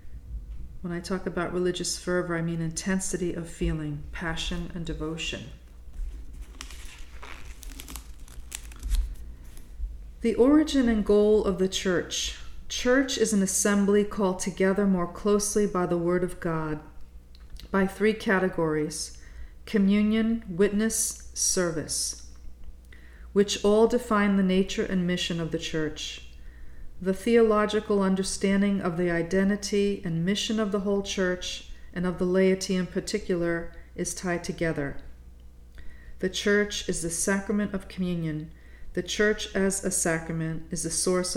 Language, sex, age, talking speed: English, female, 40-59, 125 wpm